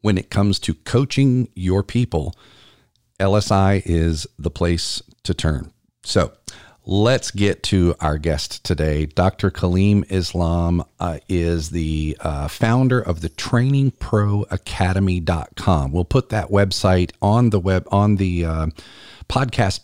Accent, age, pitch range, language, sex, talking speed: American, 40-59, 90-110 Hz, English, male, 125 wpm